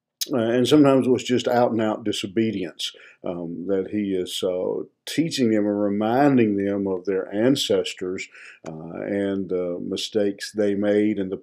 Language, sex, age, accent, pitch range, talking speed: English, male, 50-69, American, 95-115 Hz, 160 wpm